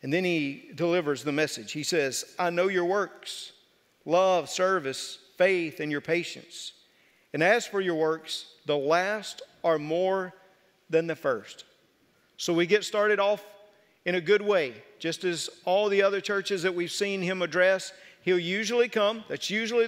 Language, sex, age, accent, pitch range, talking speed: English, male, 50-69, American, 175-220 Hz, 165 wpm